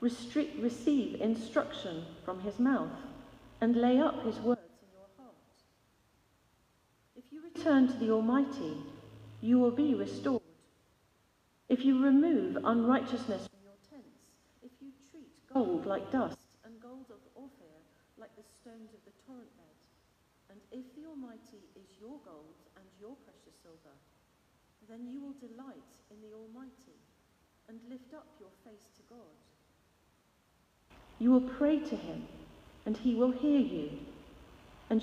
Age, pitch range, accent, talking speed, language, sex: 40-59, 215-265 Hz, British, 145 wpm, English, female